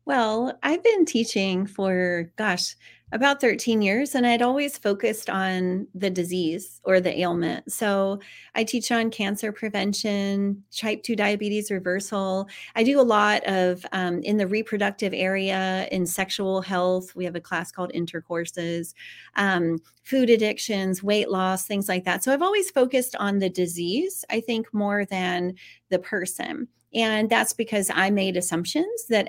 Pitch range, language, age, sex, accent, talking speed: 185-250 Hz, English, 30-49, female, American, 155 wpm